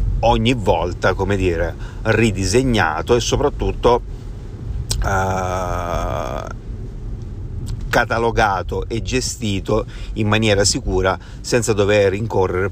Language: Italian